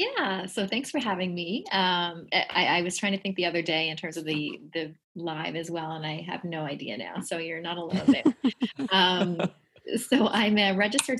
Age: 30-49